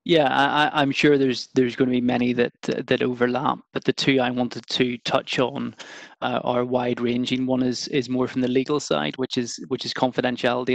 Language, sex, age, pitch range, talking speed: English, male, 20-39, 120-130 Hz, 210 wpm